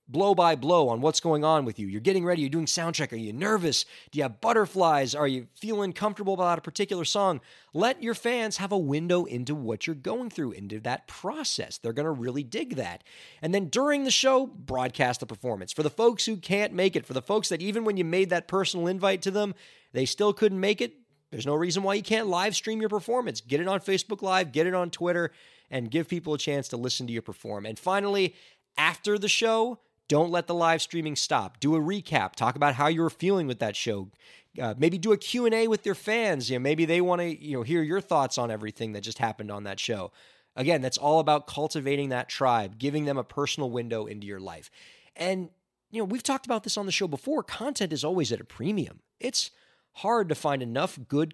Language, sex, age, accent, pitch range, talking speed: English, male, 30-49, American, 125-195 Hz, 235 wpm